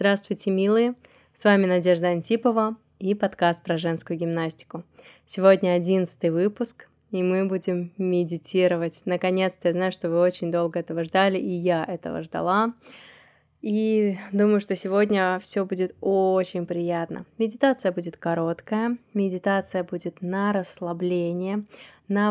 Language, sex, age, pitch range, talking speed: Russian, female, 20-39, 175-200 Hz, 125 wpm